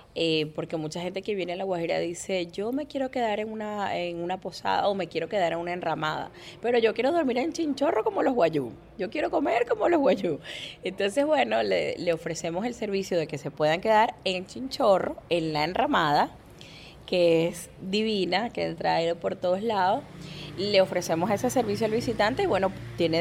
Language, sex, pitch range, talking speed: Spanish, female, 160-210 Hz, 195 wpm